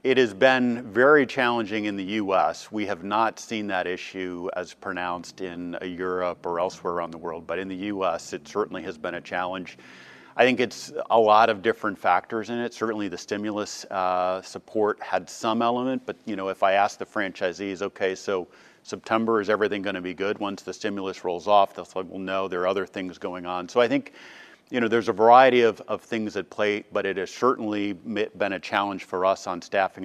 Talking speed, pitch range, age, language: 215 wpm, 90-110 Hz, 40-59, English